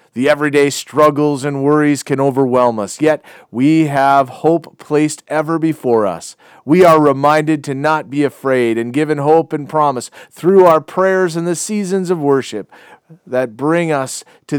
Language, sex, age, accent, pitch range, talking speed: English, male, 40-59, American, 125-155 Hz, 165 wpm